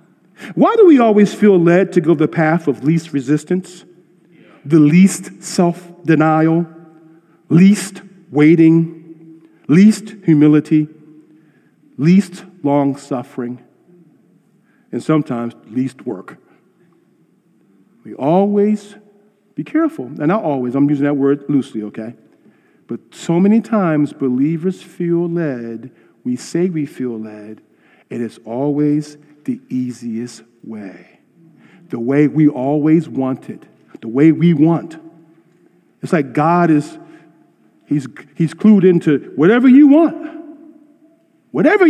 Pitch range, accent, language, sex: 140-185 Hz, American, English, male